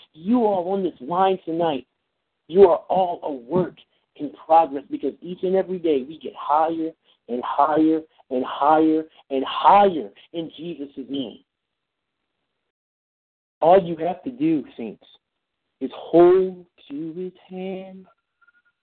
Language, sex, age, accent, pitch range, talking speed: English, male, 50-69, American, 175-230 Hz, 130 wpm